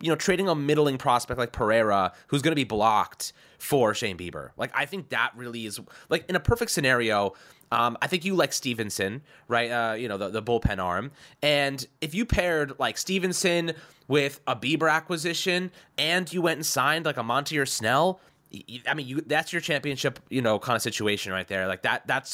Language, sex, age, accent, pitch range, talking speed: English, male, 20-39, American, 110-160 Hz, 205 wpm